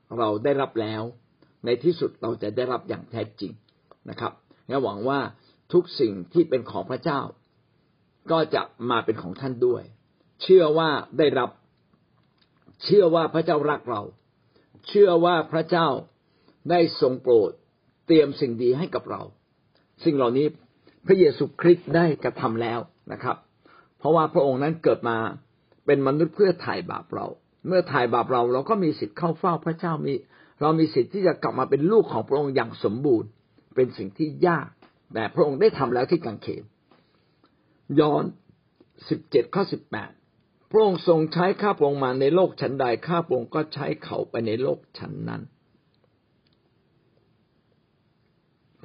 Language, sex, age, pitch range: Thai, male, 60-79, 130-175 Hz